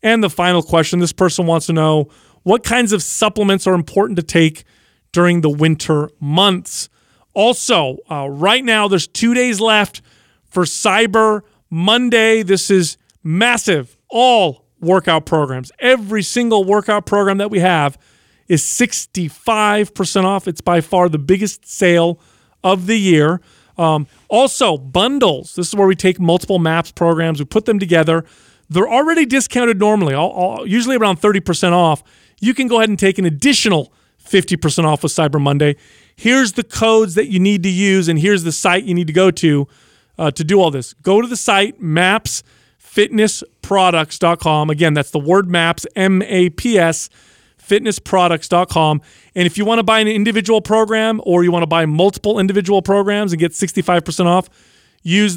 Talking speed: 160 wpm